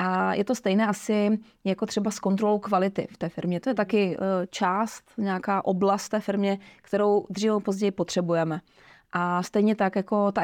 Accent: native